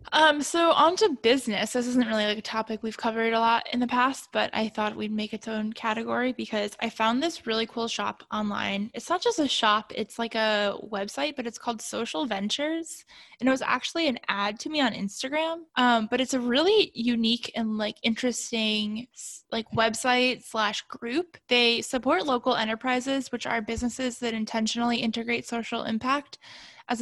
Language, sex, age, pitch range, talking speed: English, female, 10-29, 220-250 Hz, 185 wpm